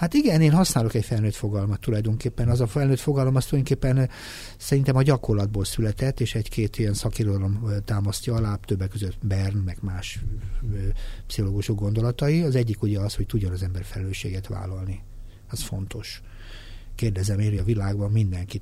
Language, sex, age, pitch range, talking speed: Hungarian, male, 60-79, 100-125 Hz, 155 wpm